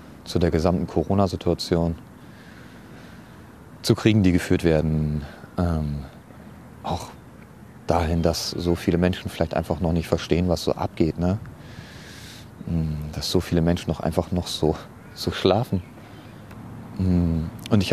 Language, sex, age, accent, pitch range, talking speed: German, male, 30-49, German, 90-110 Hz, 120 wpm